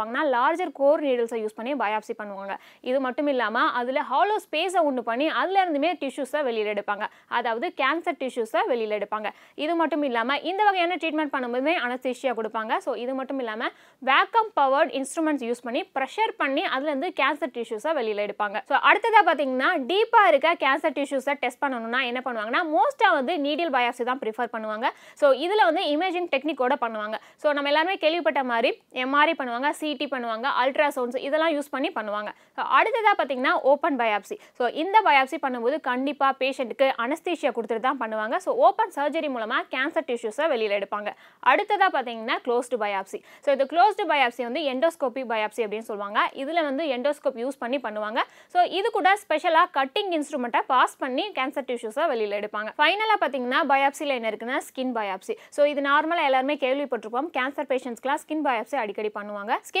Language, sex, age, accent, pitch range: Tamil, female, 20-39, native, 240-320 Hz